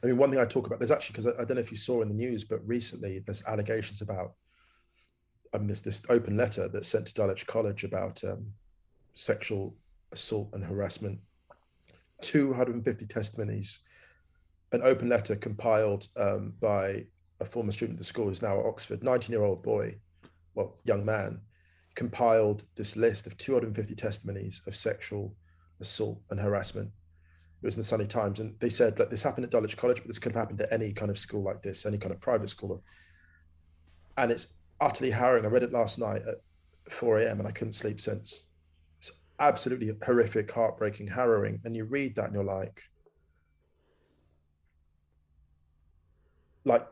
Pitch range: 85-115 Hz